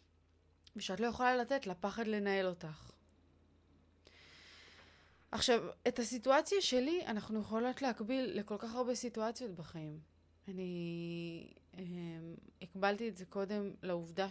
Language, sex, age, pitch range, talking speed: Hebrew, female, 20-39, 170-220 Hz, 110 wpm